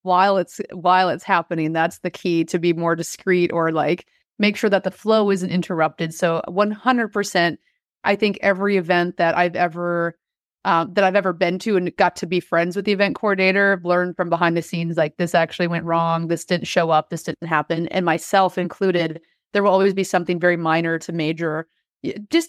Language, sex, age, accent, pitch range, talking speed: English, female, 30-49, American, 170-195 Hz, 205 wpm